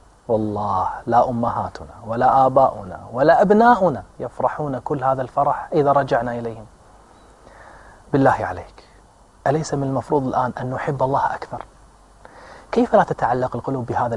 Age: 30-49